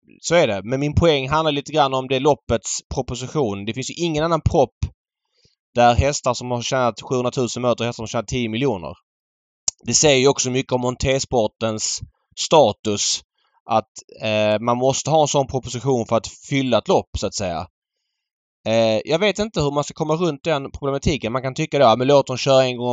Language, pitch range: Swedish, 115-145 Hz